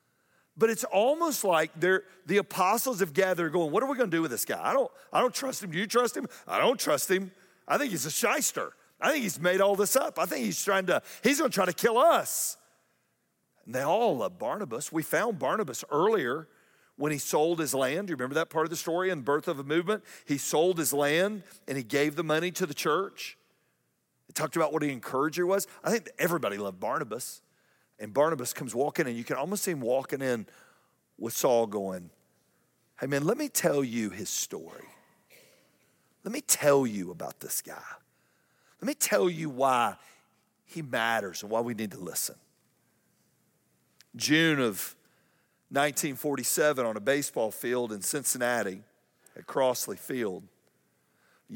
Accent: American